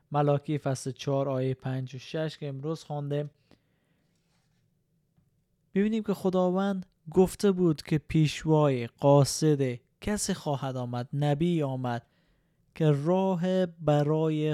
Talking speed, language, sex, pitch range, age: 105 wpm, Persian, male, 140-165 Hz, 20-39